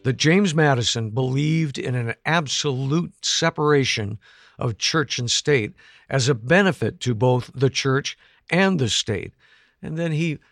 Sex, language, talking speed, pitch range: male, English, 145 wpm, 120-155 Hz